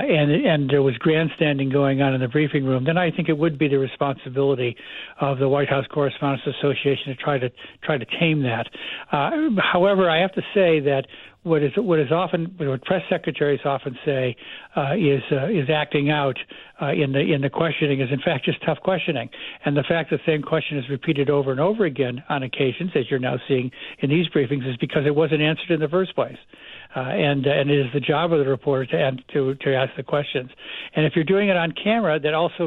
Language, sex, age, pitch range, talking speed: English, male, 60-79, 140-160 Hz, 225 wpm